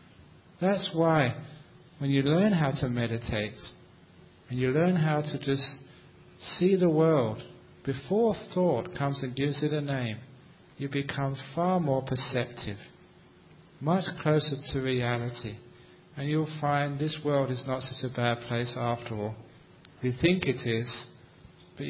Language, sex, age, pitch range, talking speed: English, male, 40-59, 120-170 Hz, 140 wpm